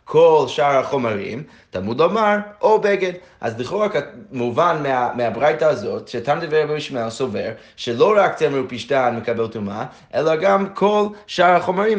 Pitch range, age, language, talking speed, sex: 115-170 Hz, 20-39, Hebrew, 140 wpm, male